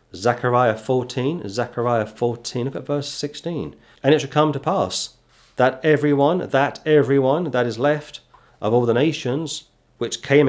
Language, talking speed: English, 155 wpm